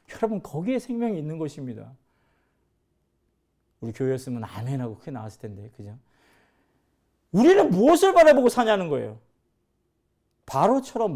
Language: Korean